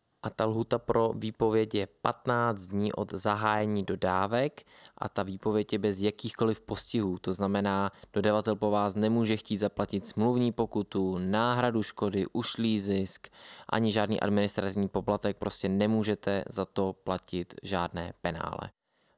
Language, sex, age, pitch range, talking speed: Czech, male, 20-39, 95-110 Hz, 135 wpm